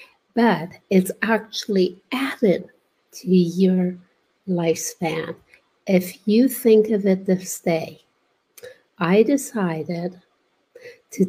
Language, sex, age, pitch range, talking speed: English, female, 60-79, 175-205 Hz, 90 wpm